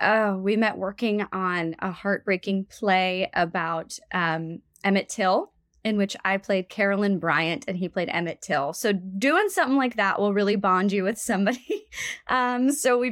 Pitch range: 185-240 Hz